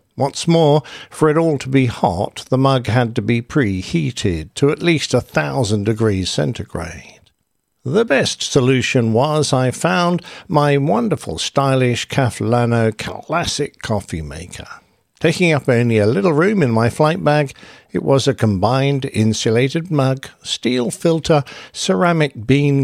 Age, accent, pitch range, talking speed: 60-79, British, 110-150 Hz, 140 wpm